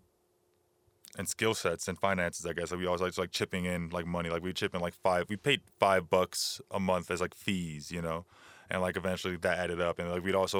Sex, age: male, 20-39